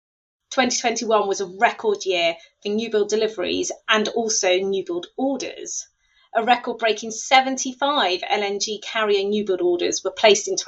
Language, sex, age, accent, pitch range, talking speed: English, female, 30-49, British, 195-250 Hz, 145 wpm